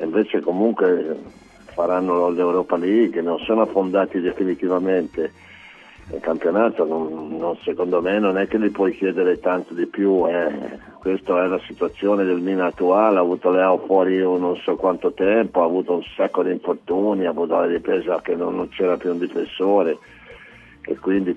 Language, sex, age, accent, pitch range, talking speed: Italian, male, 50-69, native, 90-105 Hz, 165 wpm